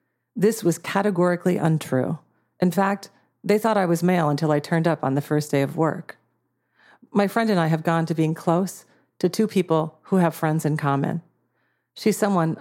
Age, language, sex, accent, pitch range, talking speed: 40-59, English, female, American, 145-180 Hz, 190 wpm